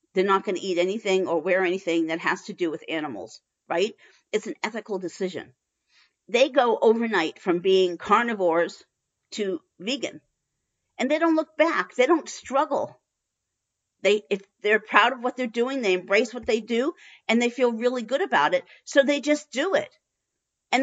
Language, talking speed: English, 180 wpm